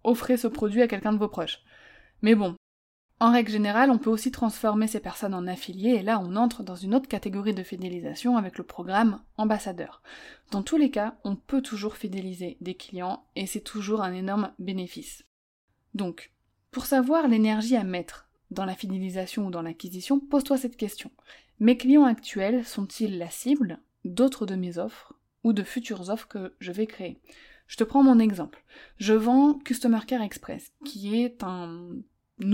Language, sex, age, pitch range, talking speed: French, female, 20-39, 190-250 Hz, 180 wpm